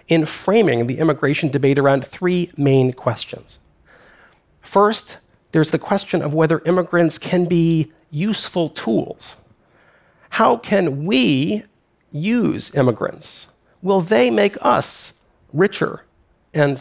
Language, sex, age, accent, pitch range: Korean, male, 40-59, American, 140-185 Hz